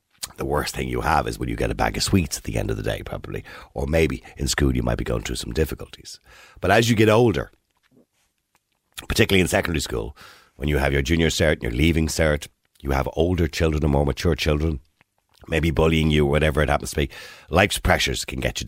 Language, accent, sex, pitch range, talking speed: English, Irish, male, 75-100 Hz, 230 wpm